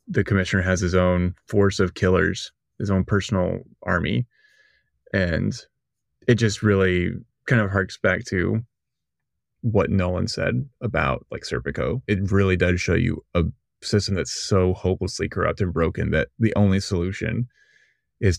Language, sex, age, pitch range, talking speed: English, male, 20-39, 90-115 Hz, 145 wpm